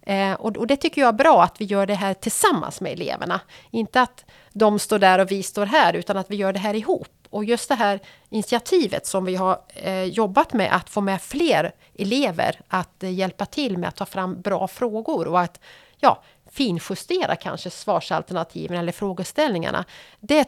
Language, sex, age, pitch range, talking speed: Swedish, female, 40-59, 185-225 Hz, 180 wpm